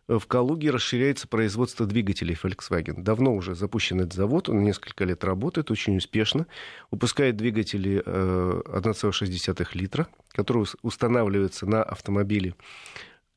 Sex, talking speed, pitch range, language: male, 110 wpm, 100-120 Hz, Russian